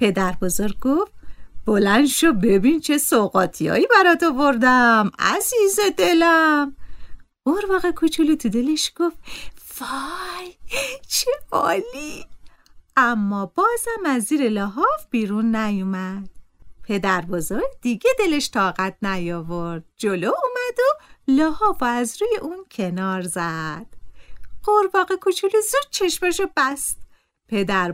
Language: Persian